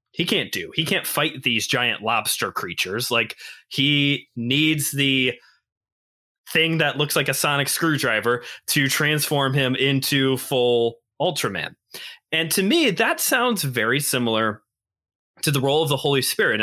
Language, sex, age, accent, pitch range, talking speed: English, male, 20-39, American, 120-145 Hz, 150 wpm